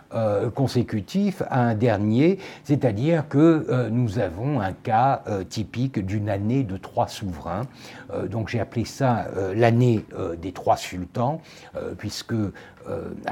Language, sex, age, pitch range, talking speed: French, male, 60-79, 110-150 Hz, 145 wpm